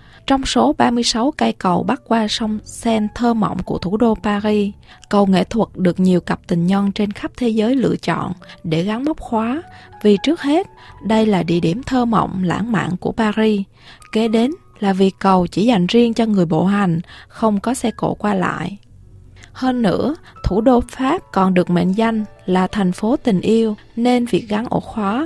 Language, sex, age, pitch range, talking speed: Vietnamese, female, 20-39, 190-240 Hz, 195 wpm